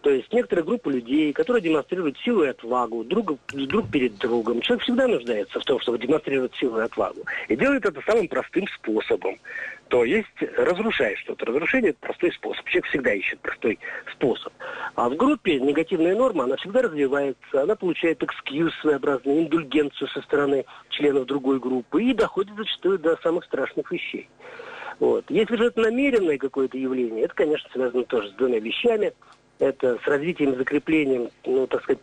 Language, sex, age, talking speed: Russian, male, 50-69, 165 wpm